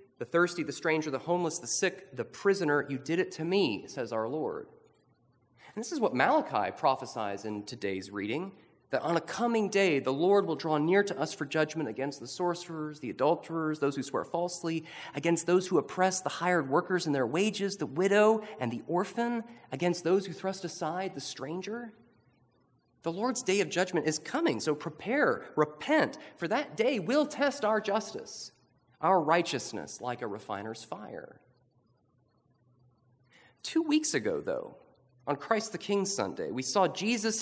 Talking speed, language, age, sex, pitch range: 170 wpm, English, 30-49, male, 135-200 Hz